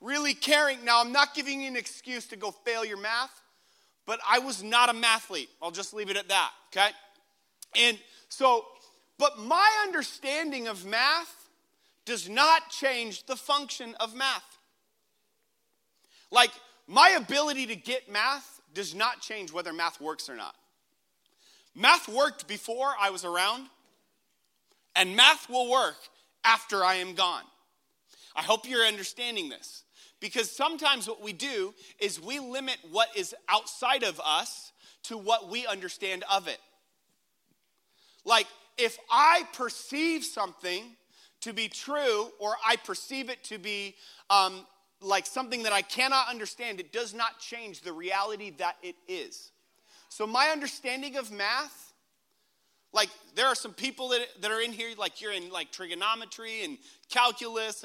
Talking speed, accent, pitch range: 150 wpm, American, 210-280 Hz